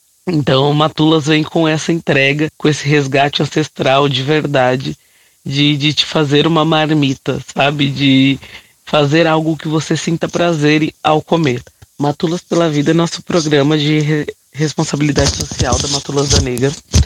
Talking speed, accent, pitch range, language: 145 wpm, Brazilian, 140-170 Hz, Portuguese